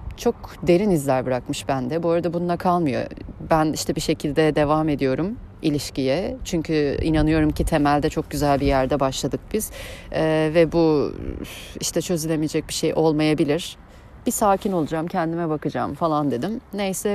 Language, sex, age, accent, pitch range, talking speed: Turkish, female, 30-49, native, 140-175 Hz, 145 wpm